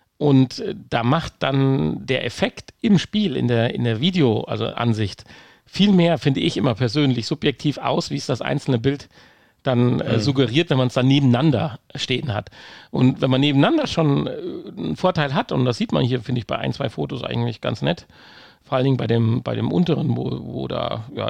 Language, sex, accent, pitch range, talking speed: German, male, German, 120-150 Hz, 205 wpm